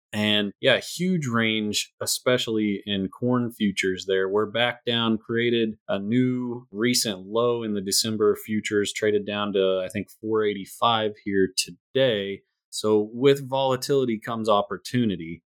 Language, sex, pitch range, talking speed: English, male, 95-110 Hz, 130 wpm